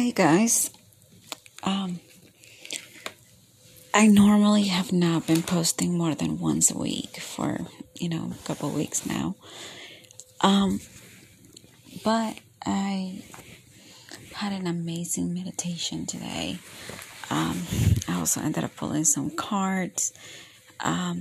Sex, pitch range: female, 125-180 Hz